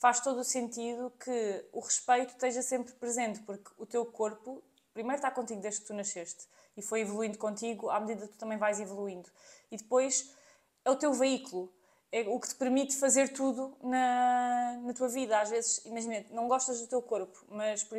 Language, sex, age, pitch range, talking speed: Portuguese, female, 20-39, 215-260 Hz, 195 wpm